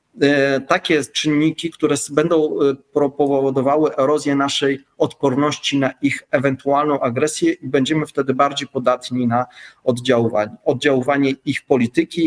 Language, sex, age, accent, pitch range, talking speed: Polish, male, 40-59, native, 135-165 Hz, 105 wpm